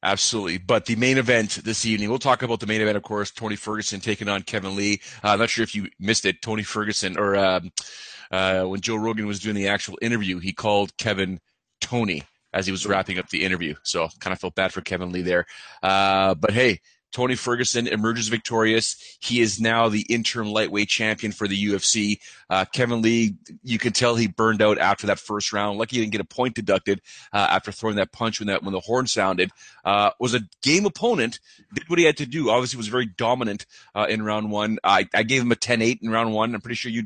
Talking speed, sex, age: 230 wpm, male, 30-49